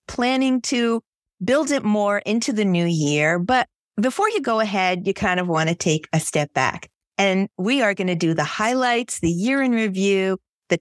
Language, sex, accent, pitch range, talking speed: English, female, American, 170-235 Hz, 200 wpm